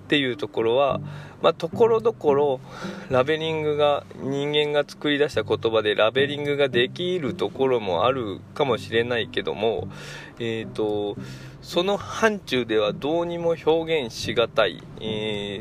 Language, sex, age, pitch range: Japanese, male, 20-39, 110-165 Hz